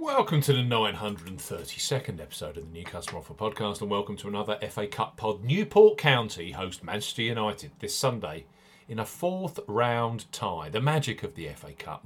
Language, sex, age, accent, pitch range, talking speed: English, male, 40-59, British, 105-140 Hz, 180 wpm